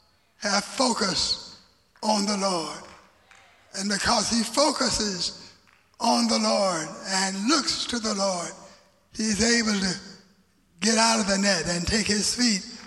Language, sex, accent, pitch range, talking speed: English, male, American, 190-240 Hz, 135 wpm